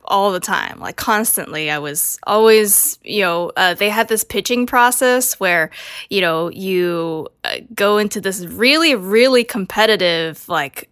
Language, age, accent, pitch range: English, 10-29, American, 190-240 Hz